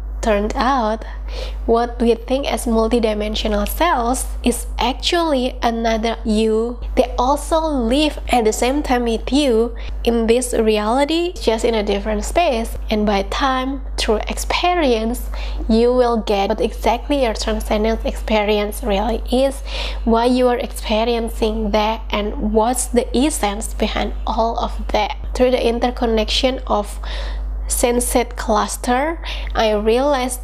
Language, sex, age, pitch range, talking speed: English, female, 20-39, 215-255 Hz, 130 wpm